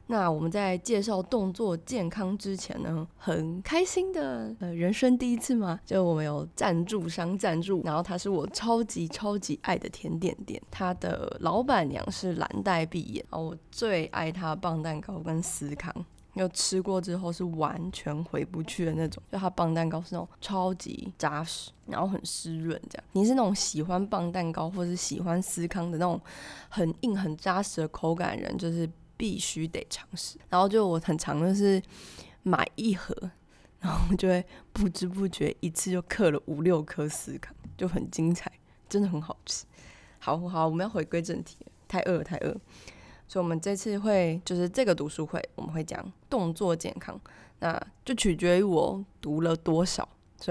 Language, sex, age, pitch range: Chinese, female, 20-39, 165-195 Hz